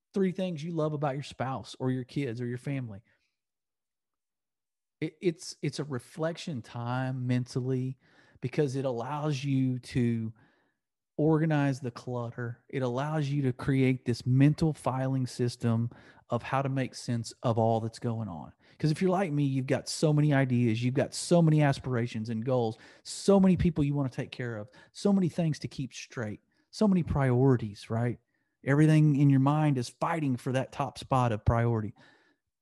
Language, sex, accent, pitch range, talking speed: English, male, American, 120-150 Hz, 175 wpm